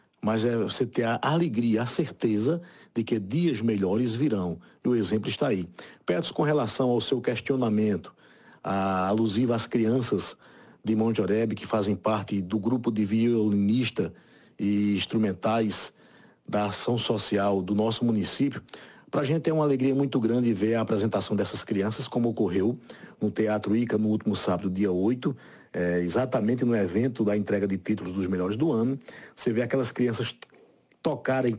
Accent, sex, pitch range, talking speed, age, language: Brazilian, male, 105-130 Hz, 160 wpm, 50-69, Portuguese